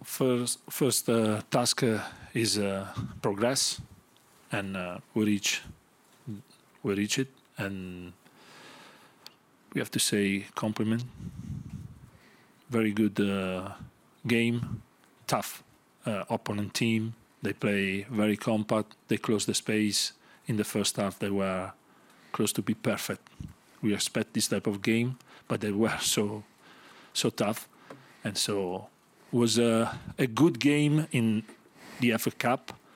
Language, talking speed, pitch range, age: English, 125 wpm, 100-120 Hz, 40-59